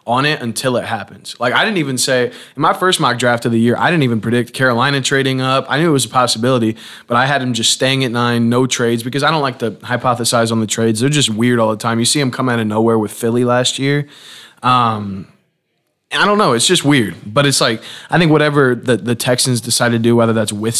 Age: 20-39